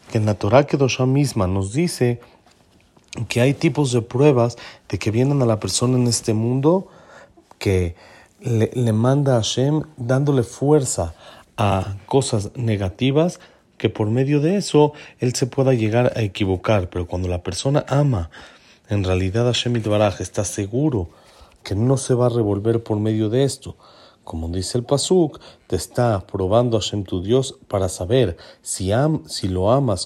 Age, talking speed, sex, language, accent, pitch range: 40-59, 165 wpm, male, Spanish, Mexican, 100-130 Hz